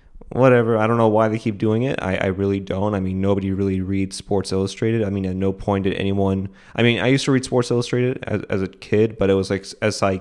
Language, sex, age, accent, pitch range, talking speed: English, male, 20-39, American, 95-105 Hz, 260 wpm